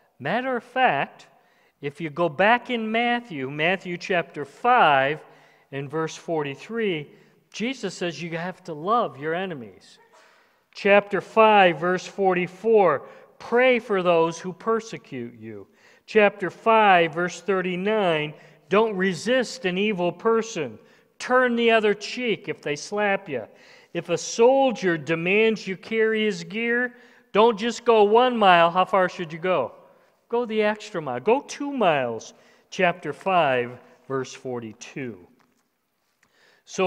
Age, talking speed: 50-69, 130 wpm